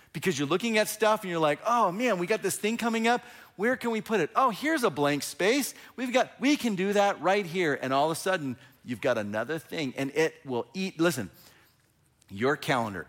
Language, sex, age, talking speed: English, male, 40-59, 230 wpm